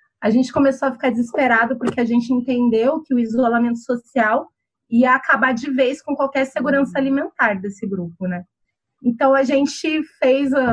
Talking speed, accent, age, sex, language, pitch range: 160 wpm, Brazilian, 30-49, female, Portuguese, 230-295 Hz